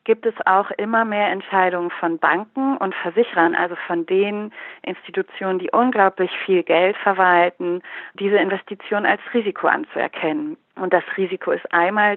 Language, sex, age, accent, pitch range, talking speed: German, female, 30-49, German, 180-230 Hz, 145 wpm